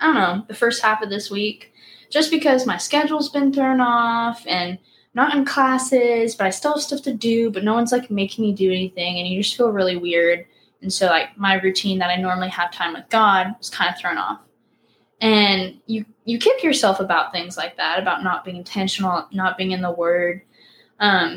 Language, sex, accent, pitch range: English, female, American, 185-240 Hz